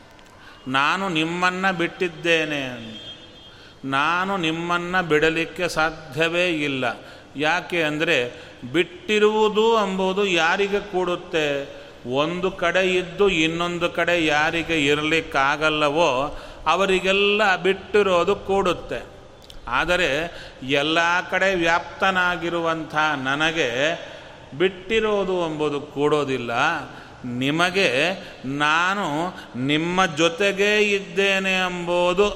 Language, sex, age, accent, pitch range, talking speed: Kannada, male, 30-49, native, 145-185 Hz, 70 wpm